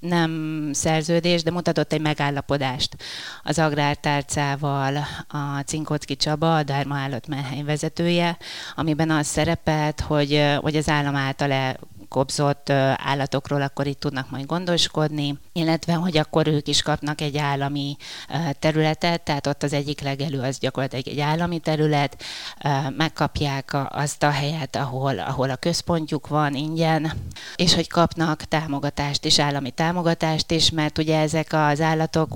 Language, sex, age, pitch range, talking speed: Hungarian, female, 30-49, 140-155 Hz, 135 wpm